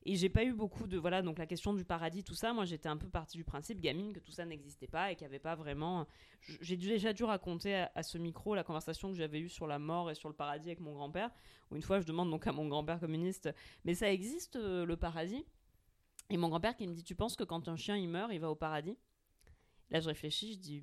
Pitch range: 155-195 Hz